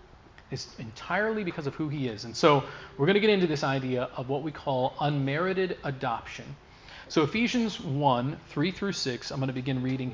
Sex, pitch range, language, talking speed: male, 125-160 Hz, English, 195 wpm